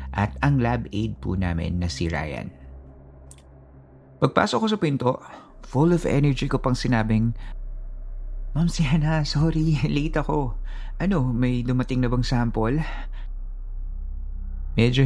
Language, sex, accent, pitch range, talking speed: Filipino, male, native, 85-130 Hz, 125 wpm